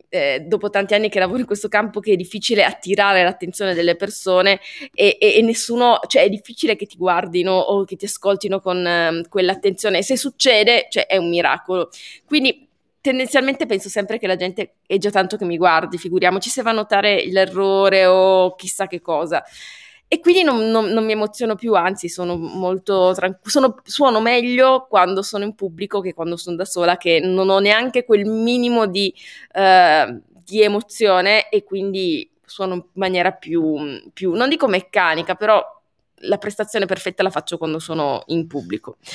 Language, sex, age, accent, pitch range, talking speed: Italian, female, 20-39, native, 185-225 Hz, 180 wpm